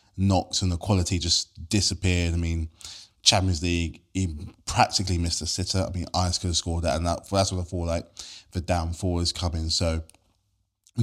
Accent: British